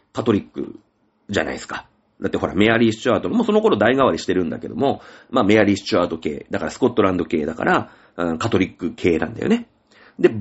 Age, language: 40-59, Japanese